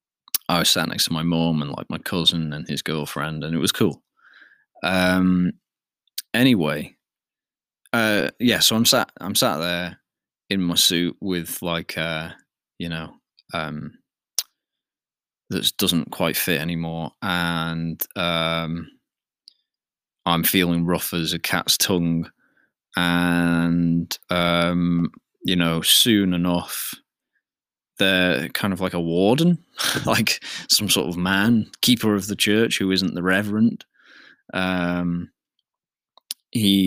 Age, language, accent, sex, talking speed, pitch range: 20-39, English, British, male, 125 wpm, 85-95 Hz